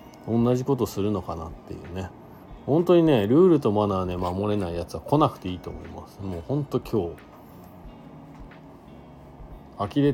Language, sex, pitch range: Japanese, male, 90-135 Hz